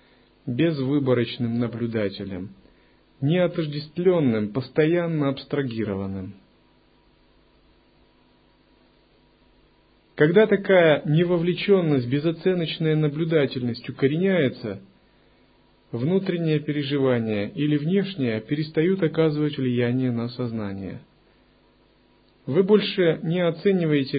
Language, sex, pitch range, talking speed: Russian, male, 100-160 Hz, 60 wpm